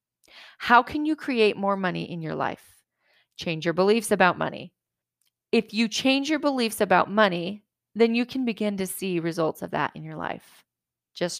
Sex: female